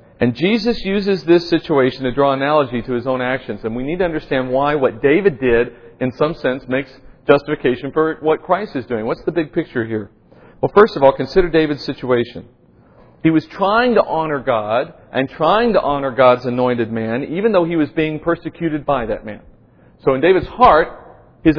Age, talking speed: 40-59, 195 wpm